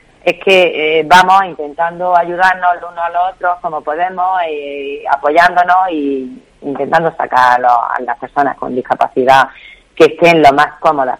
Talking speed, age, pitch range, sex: 160 wpm, 30-49, 130-170 Hz, female